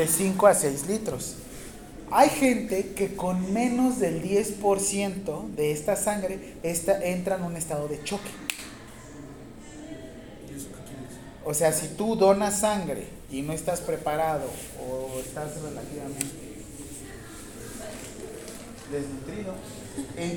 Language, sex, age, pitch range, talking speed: Spanish, male, 30-49, 150-185 Hz, 105 wpm